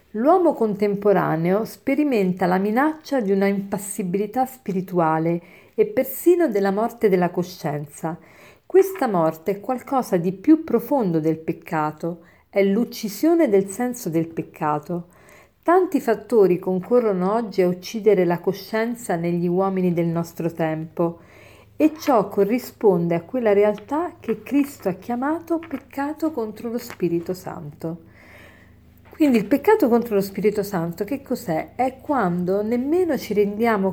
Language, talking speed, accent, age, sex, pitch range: Italian, 125 wpm, native, 50-69, female, 175-235 Hz